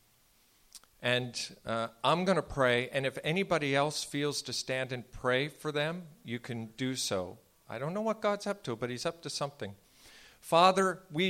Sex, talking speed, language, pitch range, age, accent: male, 185 wpm, English, 135-185 Hz, 50-69, American